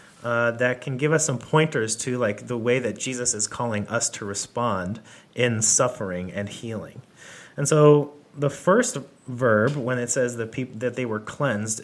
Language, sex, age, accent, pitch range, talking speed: English, male, 30-49, American, 110-140 Hz, 180 wpm